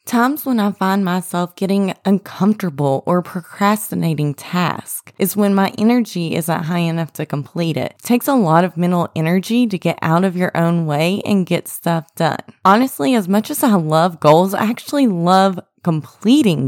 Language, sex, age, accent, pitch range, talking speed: English, female, 20-39, American, 165-215 Hz, 175 wpm